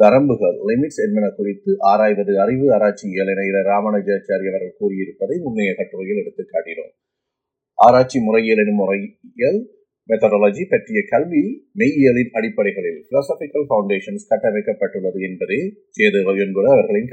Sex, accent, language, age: male, native, Tamil, 30-49